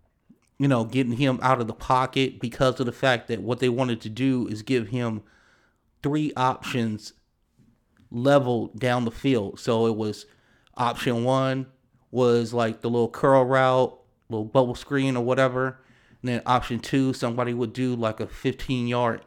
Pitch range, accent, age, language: 120-145 Hz, American, 30-49, English